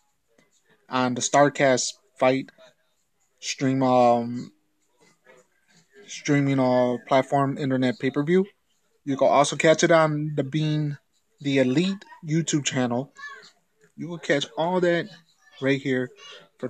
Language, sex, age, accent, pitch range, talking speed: English, male, 20-39, American, 130-155 Hz, 110 wpm